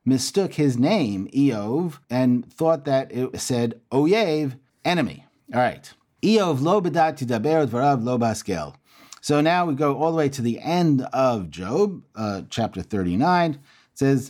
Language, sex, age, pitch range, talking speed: English, male, 30-49, 120-155 Hz, 125 wpm